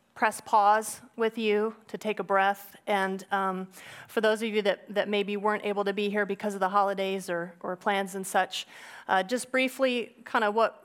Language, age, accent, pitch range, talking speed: English, 30-49, American, 190-215 Hz, 205 wpm